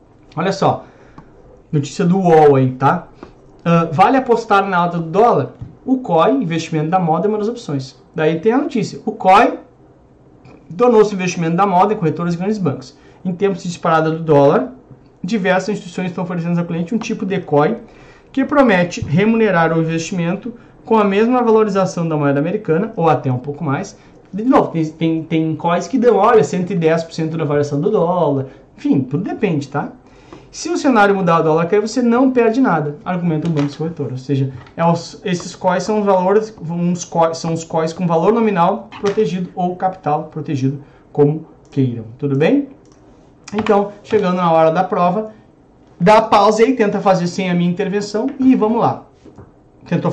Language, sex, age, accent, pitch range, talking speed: Portuguese, male, 30-49, Brazilian, 155-215 Hz, 170 wpm